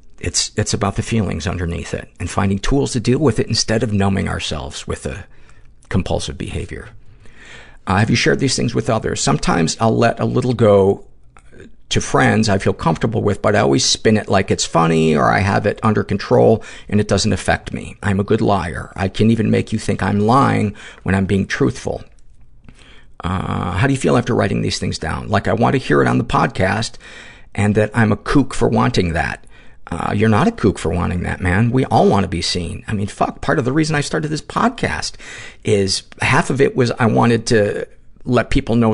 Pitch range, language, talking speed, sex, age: 95-115 Hz, English, 215 wpm, male, 50-69